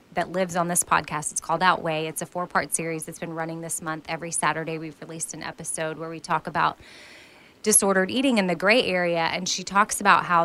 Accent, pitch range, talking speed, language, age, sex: American, 170-225 Hz, 220 wpm, English, 20-39, female